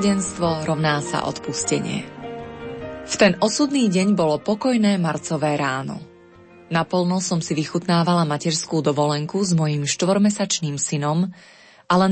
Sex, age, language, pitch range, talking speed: female, 20-39, Slovak, 155-190 Hz, 110 wpm